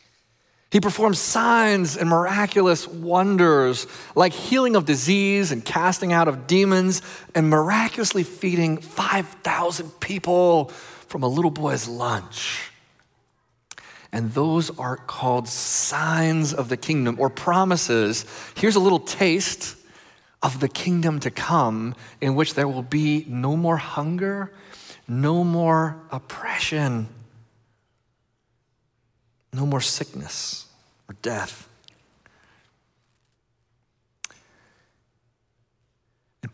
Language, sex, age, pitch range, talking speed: English, male, 30-49, 120-175 Hz, 100 wpm